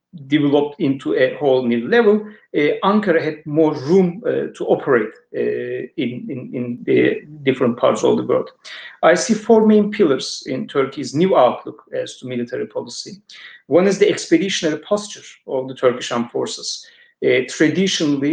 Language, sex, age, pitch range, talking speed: Turkish, male, 50-69, 125-200 Hz, 160 wpm